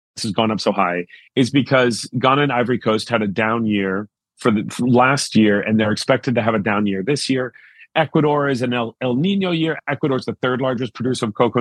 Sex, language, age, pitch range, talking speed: male, English, 40-59, 115-150 Hz, 225 wpm